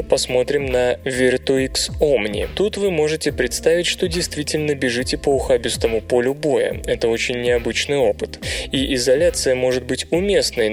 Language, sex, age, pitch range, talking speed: Russian, male, 20-39, 125-210 Hz, 135 wpm